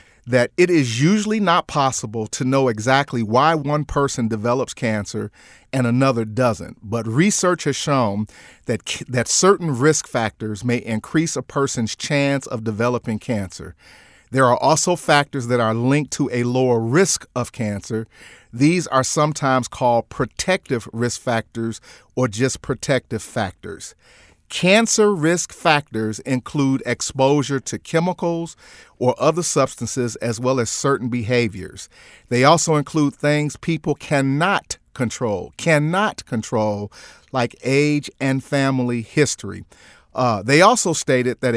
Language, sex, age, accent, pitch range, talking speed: English, male, 40-59, American, 120-150 Hz, 135 wpm